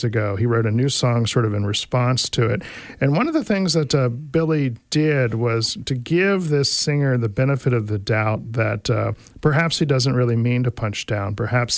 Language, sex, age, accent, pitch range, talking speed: English, male, 40-59, American, 115-150 Hz, 215 wpm